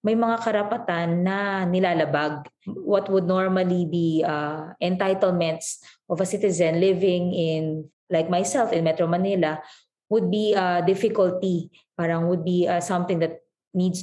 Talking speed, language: 140 wpm, Filipino